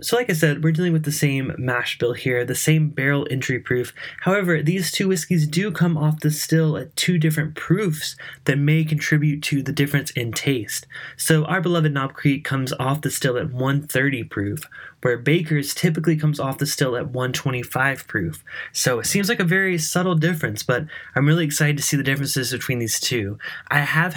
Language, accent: English, American